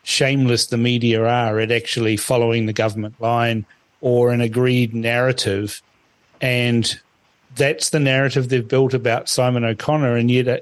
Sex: male